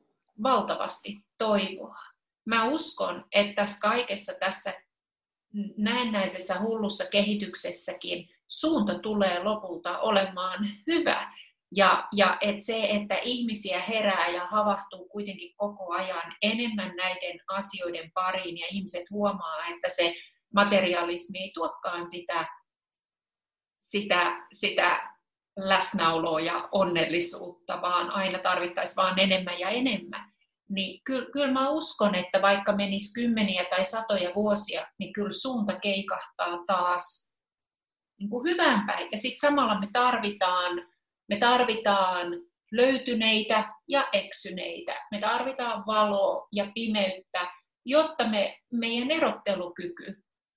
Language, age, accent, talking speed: Finnish, 30-49, native, 105 wpm